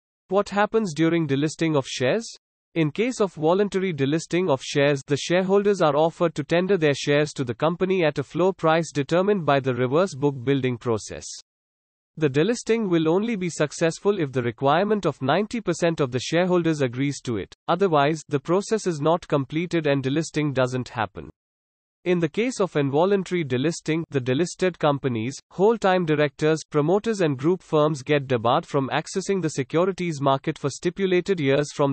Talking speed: 165 wpm